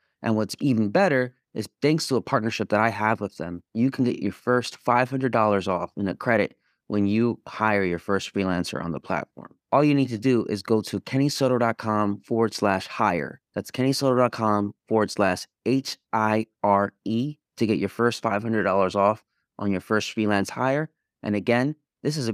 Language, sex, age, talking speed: English, male, 30-49, 175 wpm